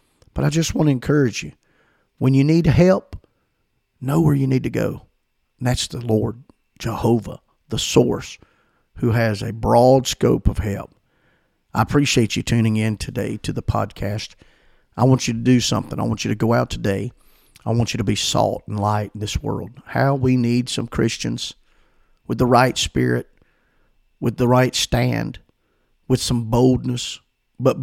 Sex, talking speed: male, 175 wpm